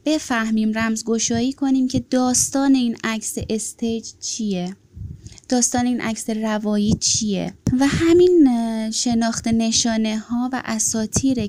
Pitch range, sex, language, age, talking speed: 205-260 Hz, female, Persian, 20-39, 110 wpm